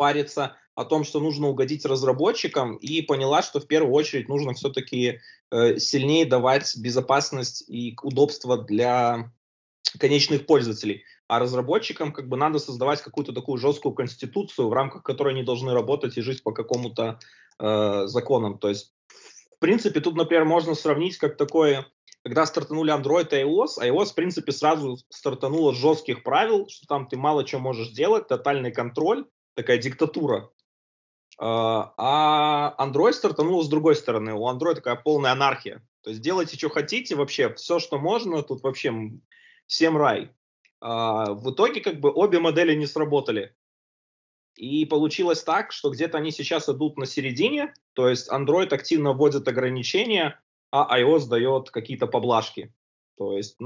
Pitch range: 125-155 Hz